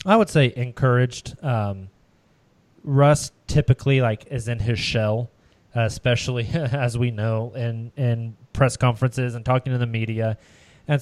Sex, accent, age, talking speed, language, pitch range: male, American, 20-39, 140 wpm, English, 115-130 Hz